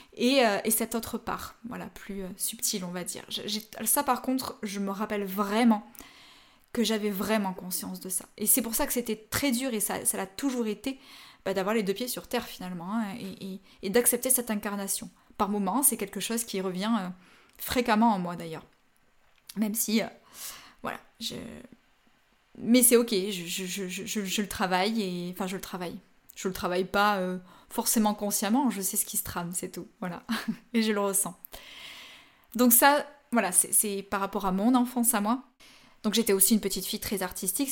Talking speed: 205 wpm